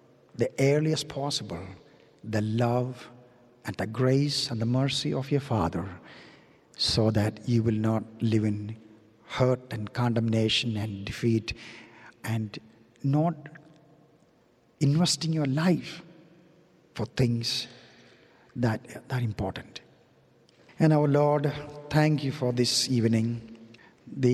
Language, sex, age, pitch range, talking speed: English, male, 50-69, 120-145 Hz, 110 wpm